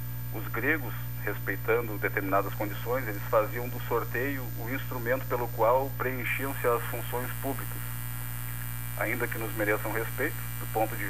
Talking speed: 135 wpm